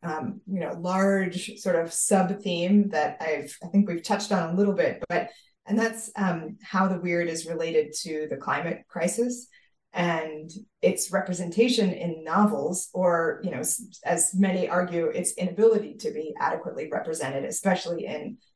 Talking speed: 155 wpm